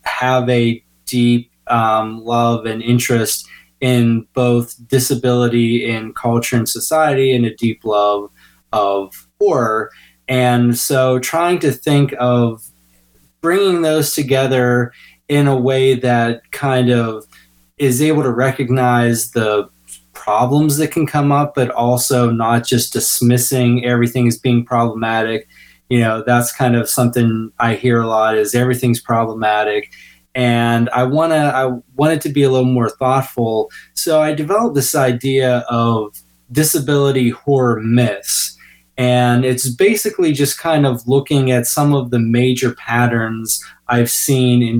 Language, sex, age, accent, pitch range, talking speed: English, male, 20-39, American, 115-130 Hz, 140 wpm